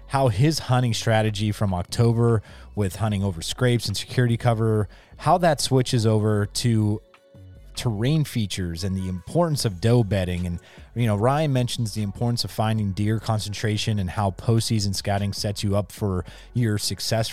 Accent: American